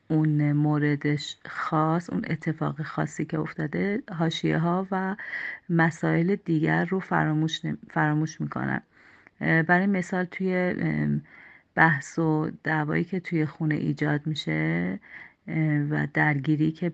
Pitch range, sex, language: 150-170 Hz, female, Persian